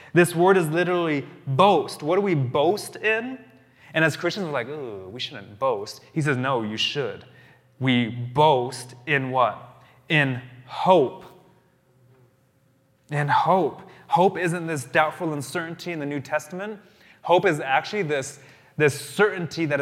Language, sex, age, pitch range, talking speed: English, male, 20-39, 130-165 Hz, 145 wpm